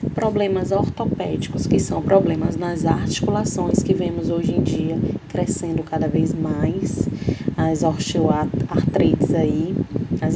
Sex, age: female, 20-39